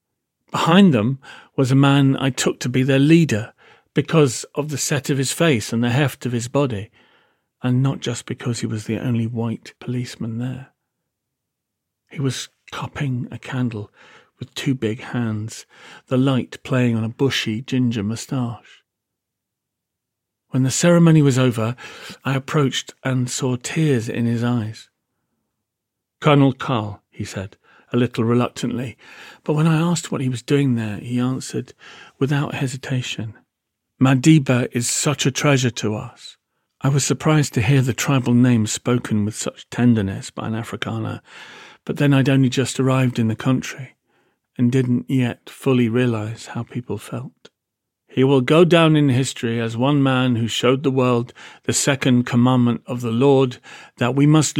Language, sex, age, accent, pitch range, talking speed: English, male, 40-59, British, 115-135 Hz, 160 wpm